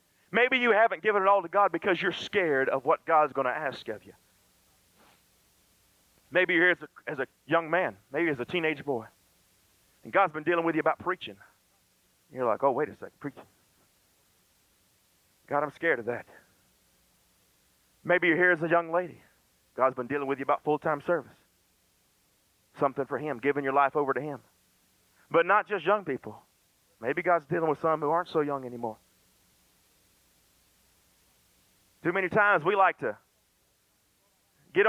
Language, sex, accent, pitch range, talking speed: English, male, American, 125-180 Hz, 170 wpm